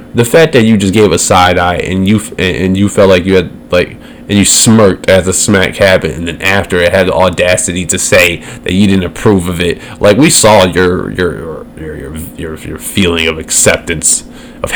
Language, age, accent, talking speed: English, 20-39, American, 215 wpm